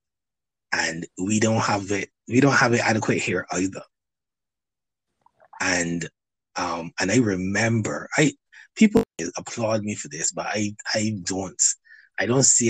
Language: English